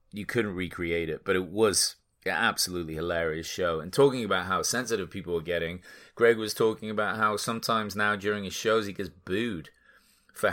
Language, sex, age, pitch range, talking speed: English, male, 30-49, 90-105 Hz, 190 wpm